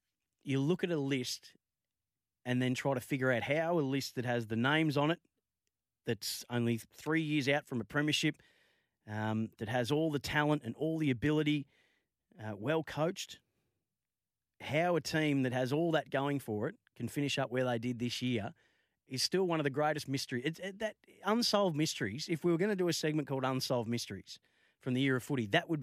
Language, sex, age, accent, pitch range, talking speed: English, male, 30-49, Australian, 120-155 Hz, 195 wpm